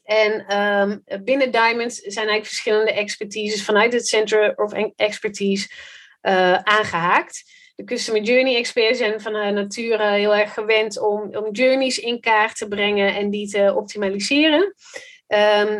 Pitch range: 200-235 Hz